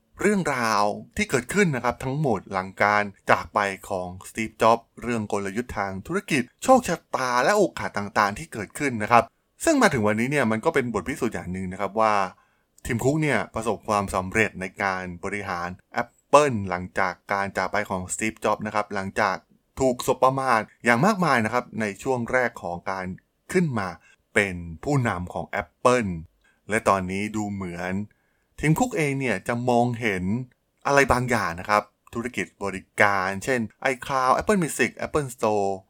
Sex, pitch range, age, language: male, 95-125 Hz, 20-39, Thai